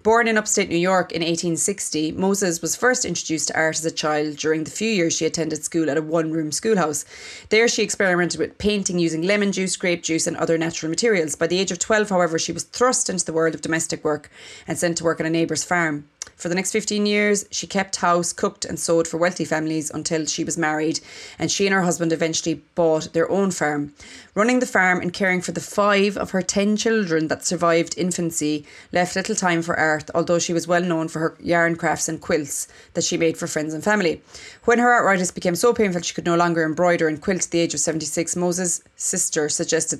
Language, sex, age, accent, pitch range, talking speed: English, female, 20-39, Irish, 160-195 Hz, 230 wpm